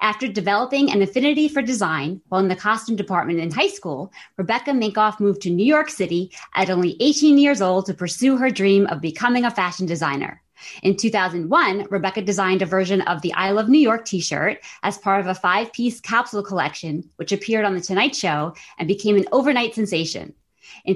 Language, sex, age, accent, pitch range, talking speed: English, female, 30-49, American, 185-230 Hz, 190 wpm